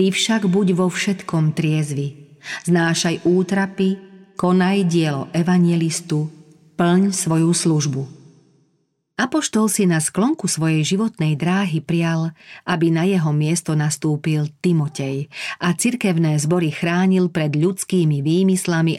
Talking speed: 105 wpm